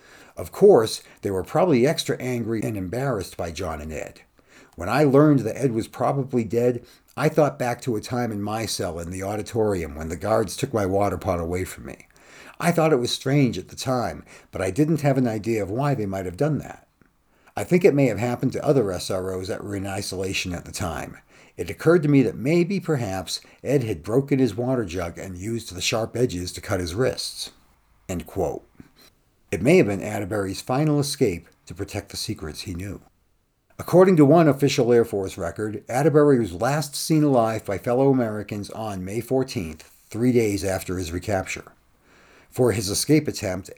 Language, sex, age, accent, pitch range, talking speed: English, male, 50-69, American, 95-130 Hz, 195 wpm